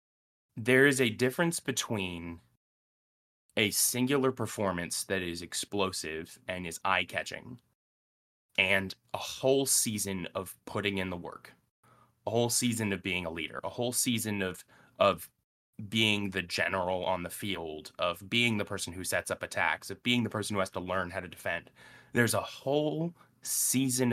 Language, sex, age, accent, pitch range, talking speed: English, male, 20-39, American, 100-130 Hz, 160 wpm